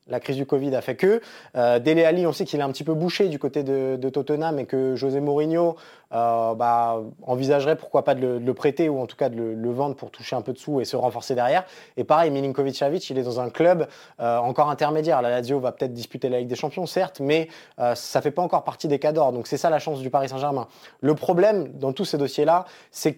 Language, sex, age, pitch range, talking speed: French, male, 20-39, 130-165 Hz, 260 wpm